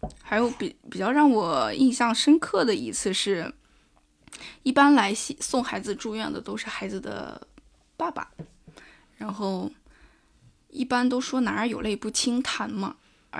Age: 10-29